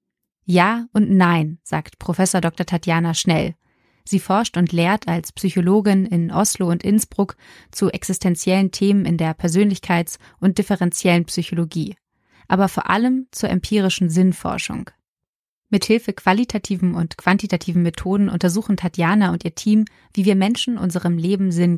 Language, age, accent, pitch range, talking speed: German, 20-39, German, 175-200 Hz, 135 wpm